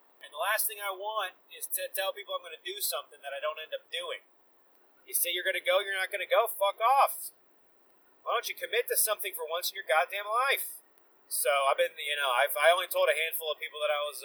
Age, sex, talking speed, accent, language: 30-49, male, 255 wpm, American, English